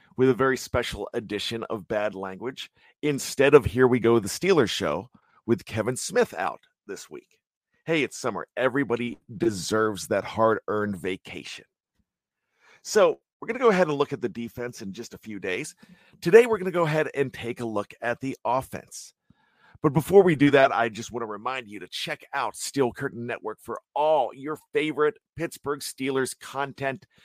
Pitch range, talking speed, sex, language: 115-150 Hz, 185 wpm, male, English